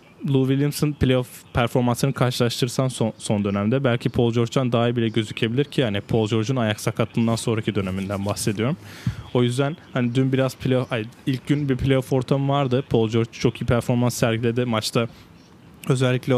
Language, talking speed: Turkish, 165 wpm